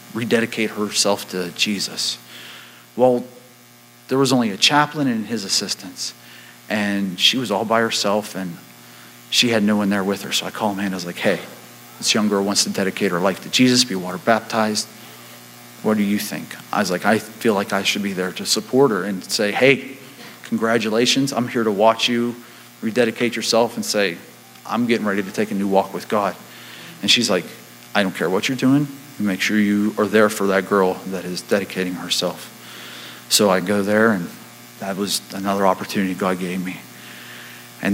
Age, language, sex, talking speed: 40-59, English, male, 195 wpm